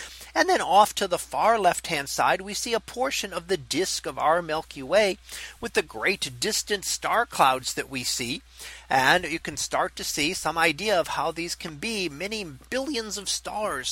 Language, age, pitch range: English, 40-59, 145-195 Hz